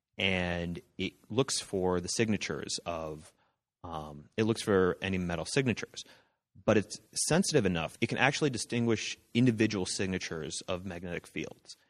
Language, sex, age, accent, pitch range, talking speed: English, male, 30-49, American, 85-110 Hz, 135 wpm